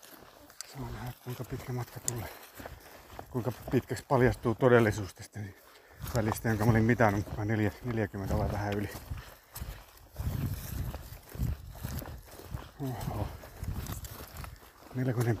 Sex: male